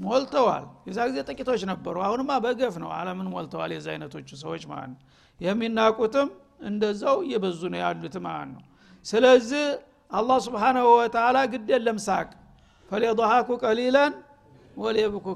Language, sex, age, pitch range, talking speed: Amharic, male, 60-79, 185-240 Hz, 110 wpm